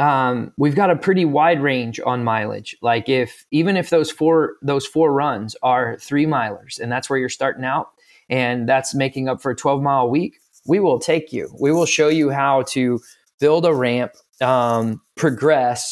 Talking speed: 195 wpm